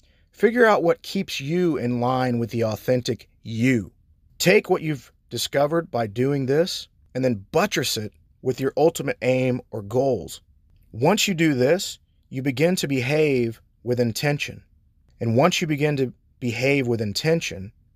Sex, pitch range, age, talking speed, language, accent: male, 105-135 Hz, 30-49, 155 wpm, English, American